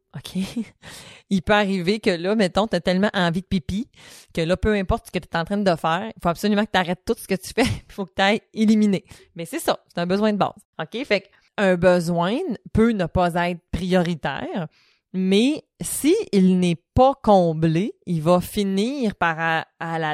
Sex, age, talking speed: female, 20-39, 210 wpm